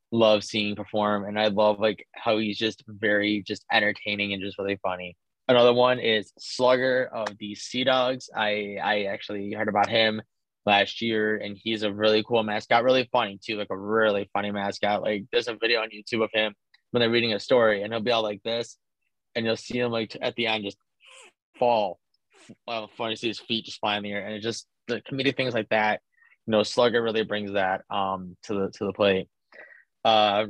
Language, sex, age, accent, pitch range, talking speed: English, male, 20-39, American, 100-115 Hz, 215 wpm